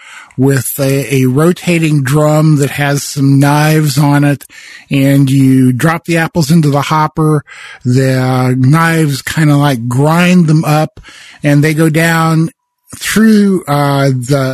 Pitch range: 130-165 Hz